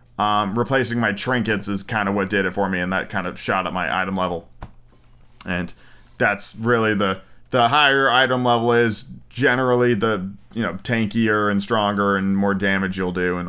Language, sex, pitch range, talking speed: English, male, 105-130 Hz, 190 wpm